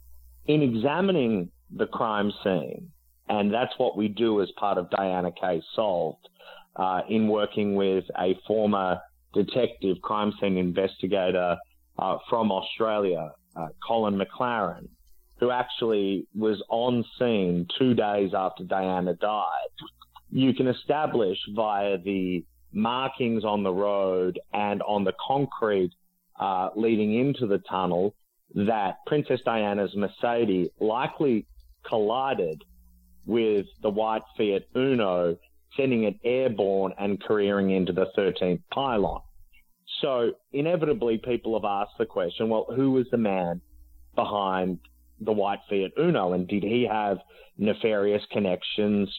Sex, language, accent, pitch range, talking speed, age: male, English, Australian, 90-115 Hz, 125 wpm, 30-49